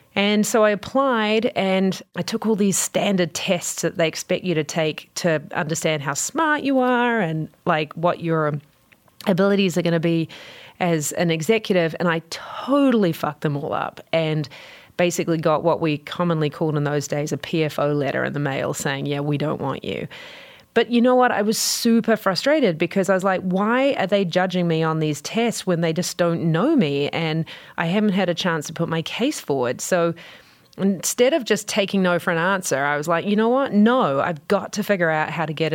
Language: English